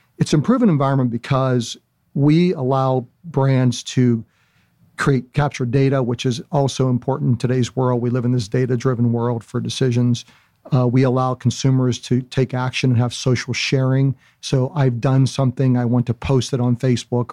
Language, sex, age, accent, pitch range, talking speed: English, male, 50-69, American, 125-140 Hz, 175 wpm